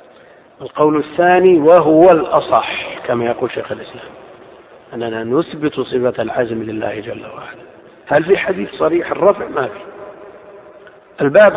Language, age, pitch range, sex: Arabic, 50-69, 125-170 Hz, male